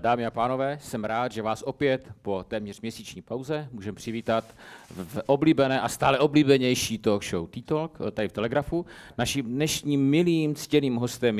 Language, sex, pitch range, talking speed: Czech, male, 95-130 Hz, 160 wpm